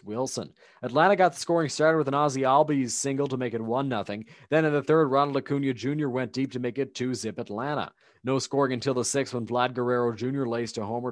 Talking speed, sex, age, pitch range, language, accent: 230 wpm, male, 30-49, 120-150 Hz, English, American